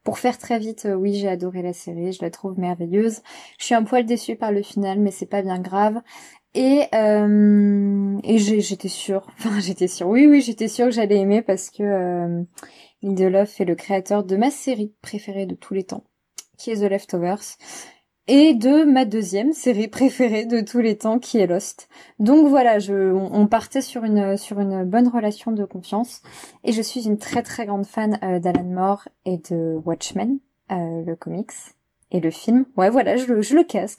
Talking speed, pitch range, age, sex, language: 190 wpm, 200-255 Hz, 20-39, female, French